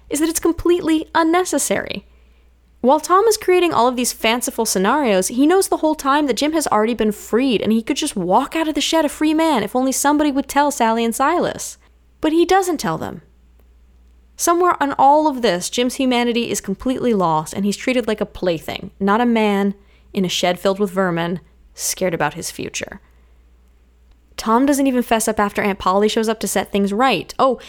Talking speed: 205 wpm